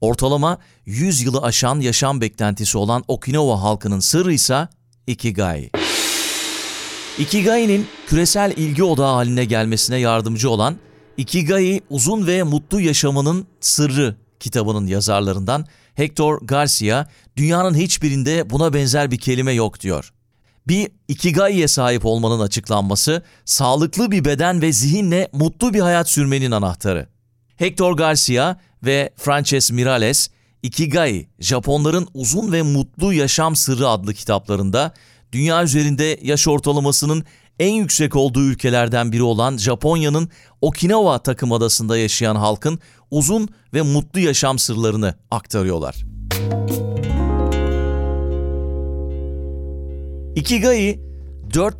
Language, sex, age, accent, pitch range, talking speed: Turkish, male, 40-59, native, 110-155 Hz, 105 wpm